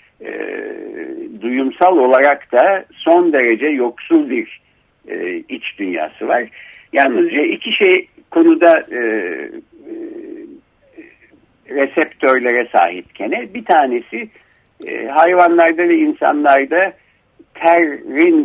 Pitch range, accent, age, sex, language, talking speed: 220-350 Hz, native, 60-79, male, Turkish, 90 wpm